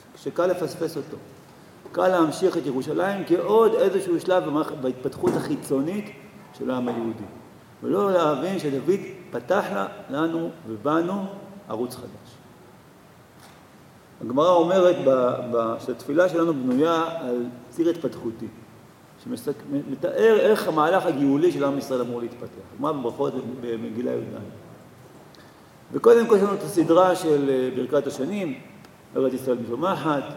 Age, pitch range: 50-69, 130-185 Hz